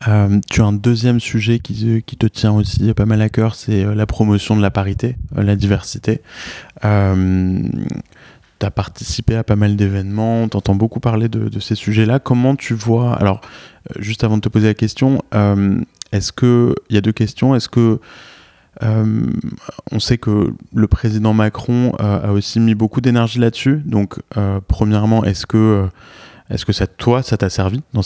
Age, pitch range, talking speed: 20-39, 100-115 Hz, 190 wpm